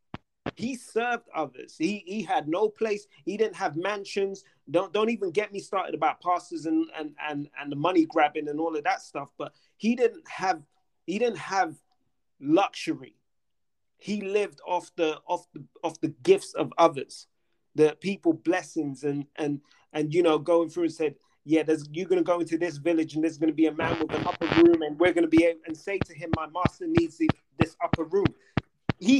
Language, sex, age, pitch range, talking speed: English, male, 30-49, 160-215 Hz, 205 wpm